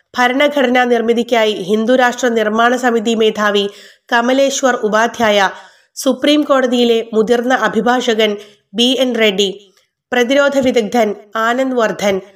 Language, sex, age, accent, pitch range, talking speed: Malayalam, female, 30-49, native, 215-255 Hz, 90 wpm